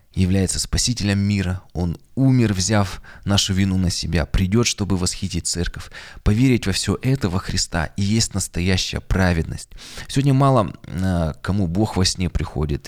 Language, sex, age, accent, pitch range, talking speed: Russian, male, 20-39, native, 85-100 Hz, 145 wpm